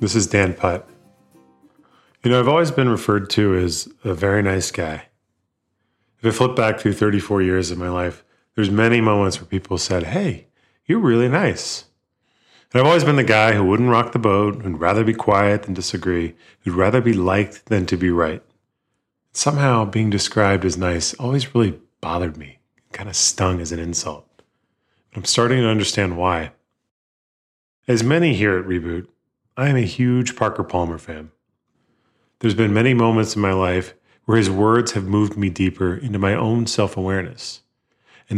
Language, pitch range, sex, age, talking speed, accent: English, 95-120 Hz, male, 30-49, 175 wpm, American